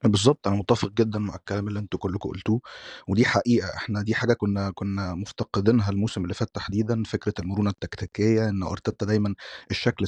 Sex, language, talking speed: male, Arabic, 175 wpm